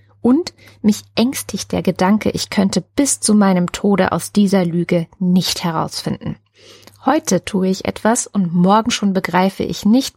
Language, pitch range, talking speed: German, 185-240 Hz, 155 wpm